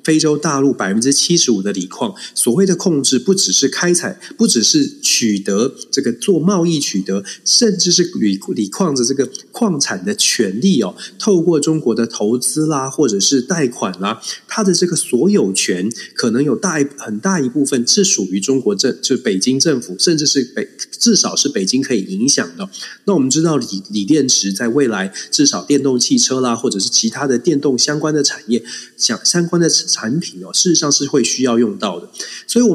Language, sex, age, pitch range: Chinese, male, 30-49, 120-170 Hz